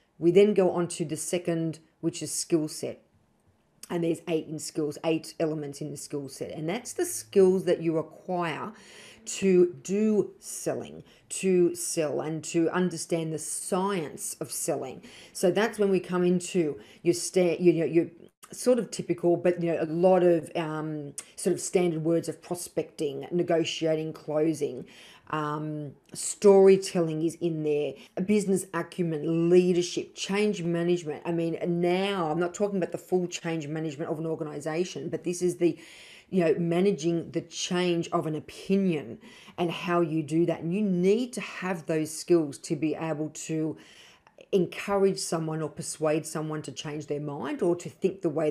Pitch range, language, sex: 160-185 Hz, English, female